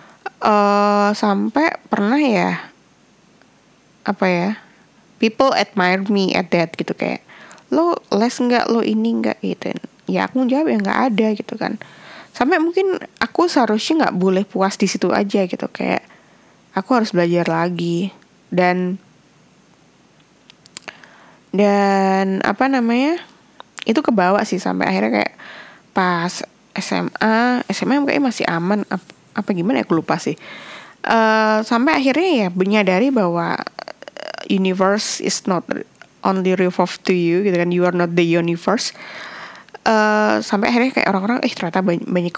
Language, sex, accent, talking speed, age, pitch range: Indonesian, female, native, 135 wpm, 20-39, 180-235 Hz